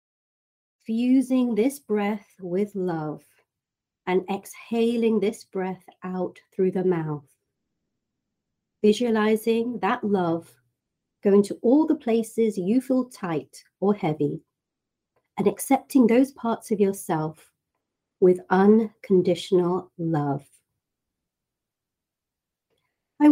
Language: English